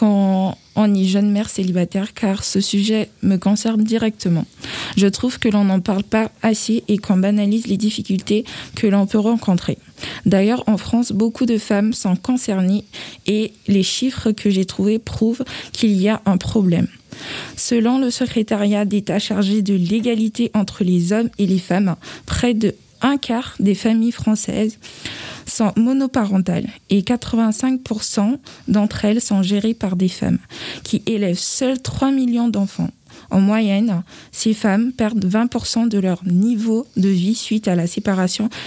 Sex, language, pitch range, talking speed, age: female, French, 195-230 Hz, 155 wpm, 20-39